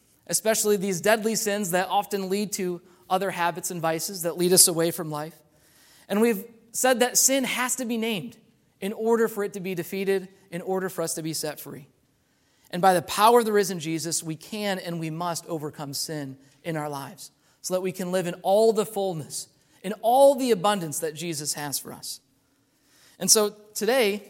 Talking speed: 200 wpm